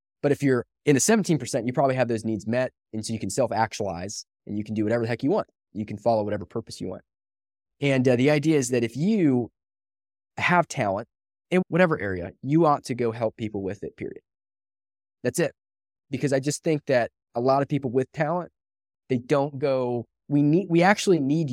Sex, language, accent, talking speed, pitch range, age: male, English, American, 215 wpm, 100-130 Hz, 20-39